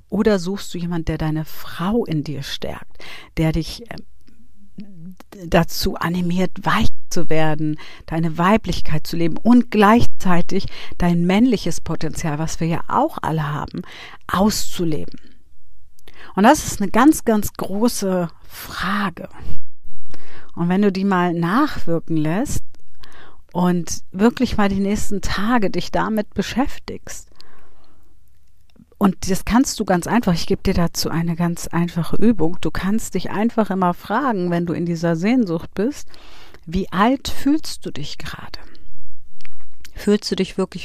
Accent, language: German, German